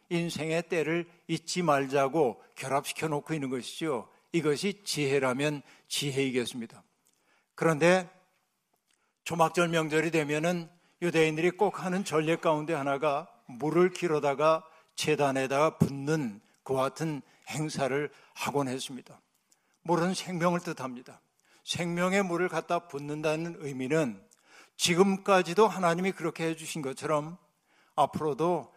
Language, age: Korean, 60-79